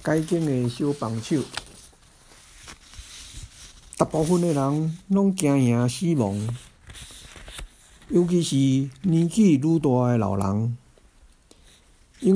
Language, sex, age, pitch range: Chinese, male, 60-79, 105-140 Hz